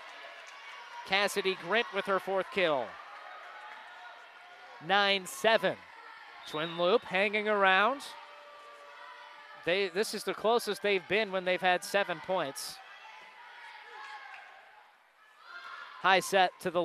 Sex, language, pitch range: male, English, 190-225 Hz